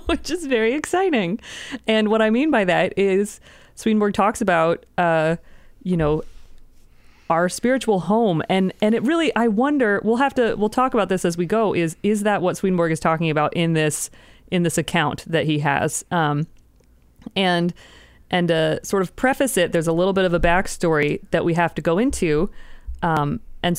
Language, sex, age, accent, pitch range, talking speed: English, female, 30-49, American, 165-210 Hz, 190 wpm